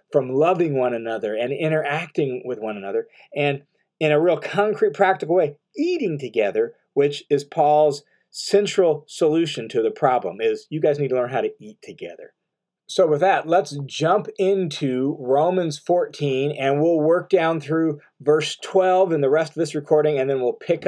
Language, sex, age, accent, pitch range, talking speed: English, male, 40-59, American, 145-195 Hz, 175 wpm